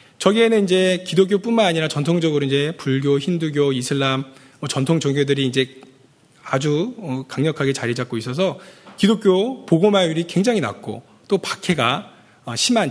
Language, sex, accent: Korean, male, native